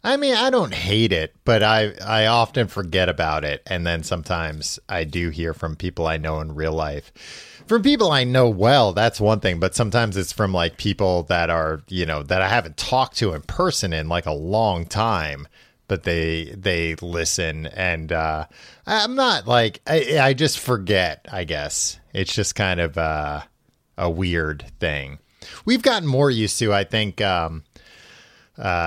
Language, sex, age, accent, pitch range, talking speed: English, male, 30-49, American, 85-120 Hz, 185 wpm